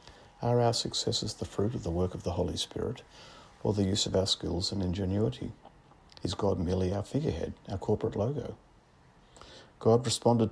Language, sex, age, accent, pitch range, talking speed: English, male, 50-69, Australian, 85-110 Hz, 170 wpm